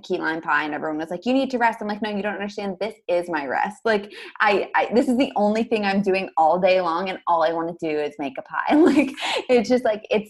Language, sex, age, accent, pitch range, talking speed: English, female, 20-39, American, 190-230 Hz, 290 wpm